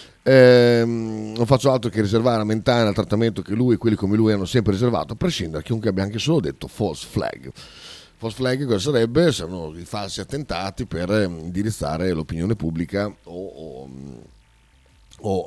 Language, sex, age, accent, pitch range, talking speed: Italian, male, 40-59, native, 85-110 Hz, 170 wpm